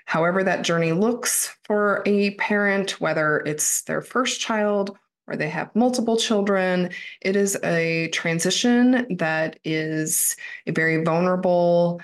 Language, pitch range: English, 165-205 Hz